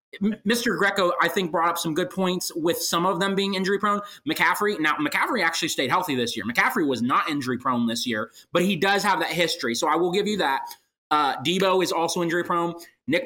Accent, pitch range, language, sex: American, 150-195 Hz, English, male